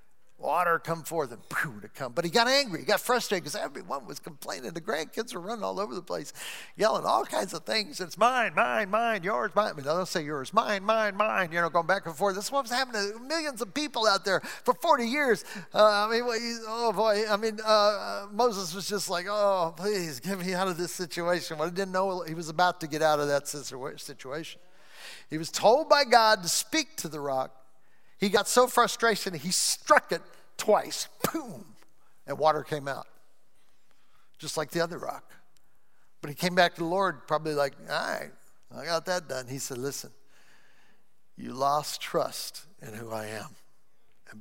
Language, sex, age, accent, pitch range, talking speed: English, male, 40-59, American, 145-215 Hz, 205 wpm